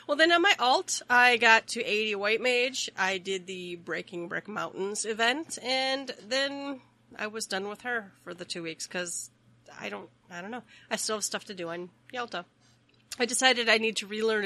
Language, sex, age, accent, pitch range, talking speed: English, female, 30-49, American, 175-225 Hz, 205 wpm